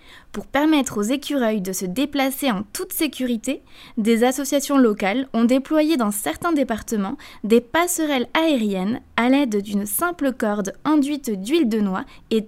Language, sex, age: French, female, 20-39